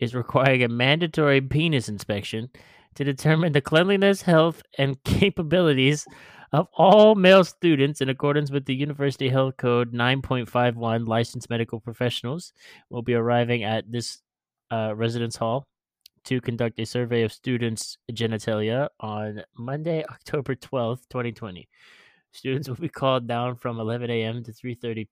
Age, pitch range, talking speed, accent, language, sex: 20-39, 115-145 Hz, 140 wpm, American, English, male